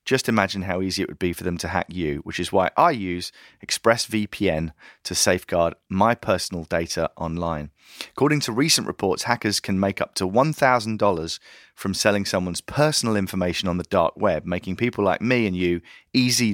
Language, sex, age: English, male, 30-49